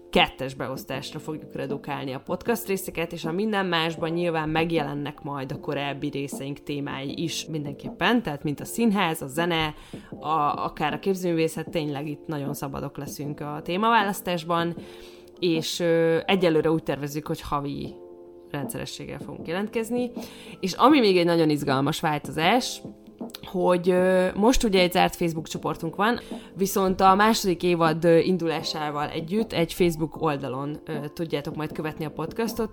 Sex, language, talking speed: female, Hungarian, 145 wpm